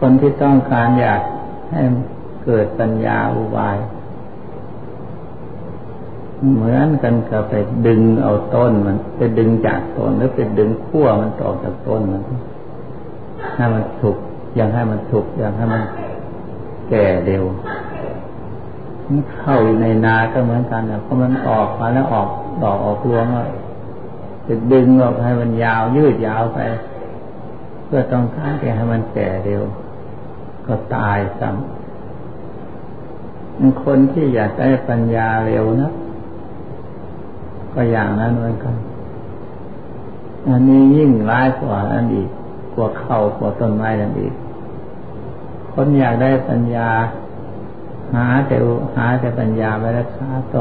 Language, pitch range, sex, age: Thai, 110-130 Hz, male, 60-79